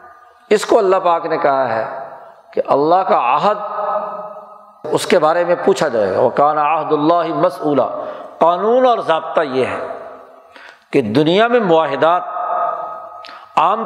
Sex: male